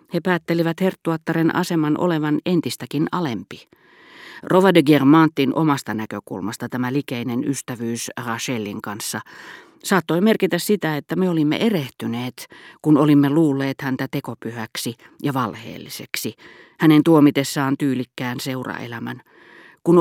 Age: 40-59